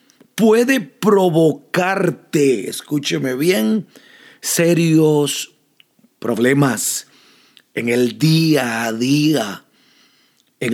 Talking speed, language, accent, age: 65 wpm, Spanish, Mexican, 40-59